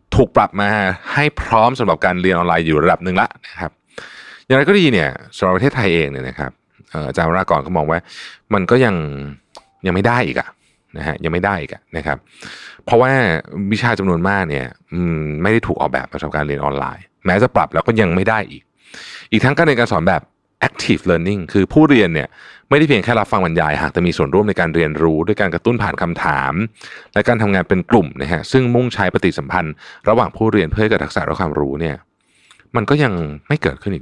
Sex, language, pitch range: male, Thai, 80-110 Hz